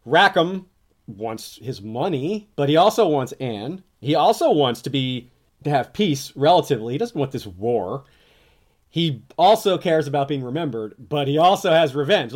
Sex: male